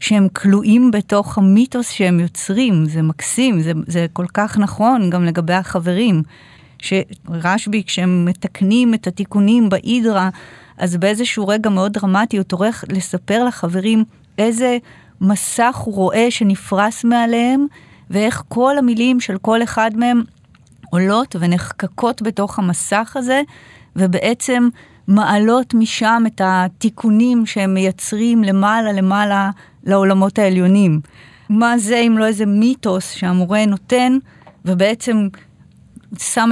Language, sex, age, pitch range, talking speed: Hebrew, female, 30-49, 180-225 Hz, 115 wpm